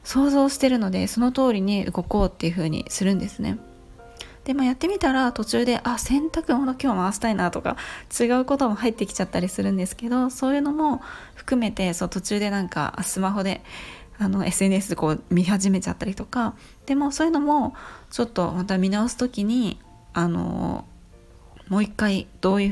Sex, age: female, 20-39